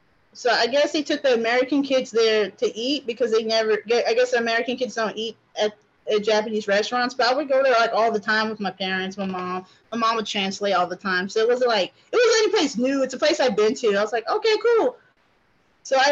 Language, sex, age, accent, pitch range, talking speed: English, female, 20-39, American, 220-290 Hz, 265 wpm